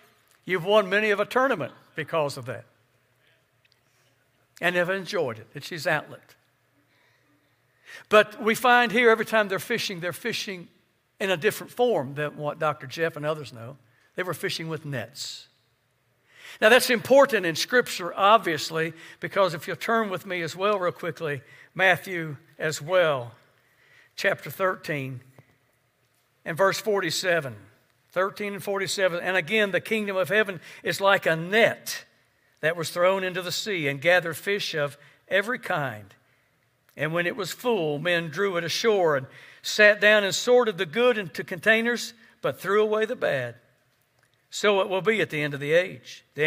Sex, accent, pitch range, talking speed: male, American, 140-195 Hz, 160 wpm